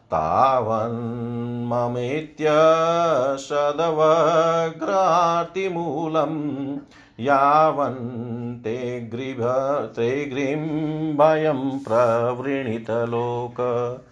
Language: Hindi